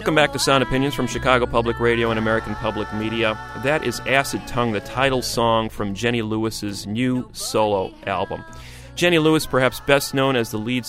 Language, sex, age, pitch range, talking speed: English, male, 40-59, 110-135 Hz, 185 wpm